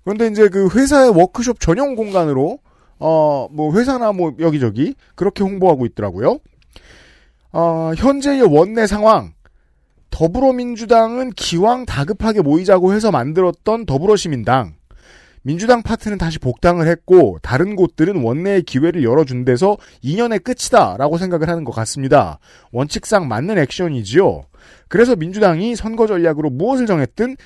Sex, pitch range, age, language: male, 150-225 Hz, 40-59, Korean